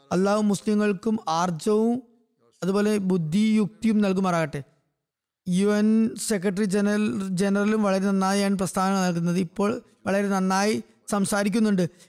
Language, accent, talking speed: Malayalam, native, 95 wpm